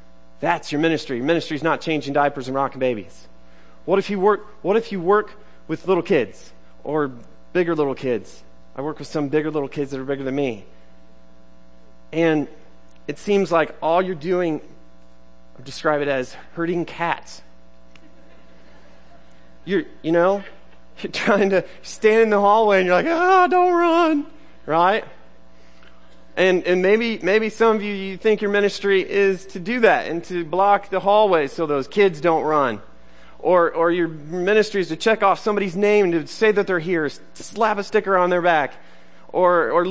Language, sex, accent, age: English, male, American, 30-49